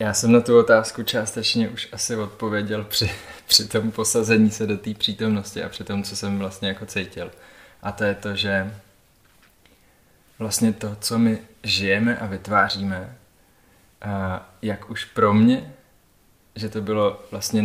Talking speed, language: 155 wpm, Czech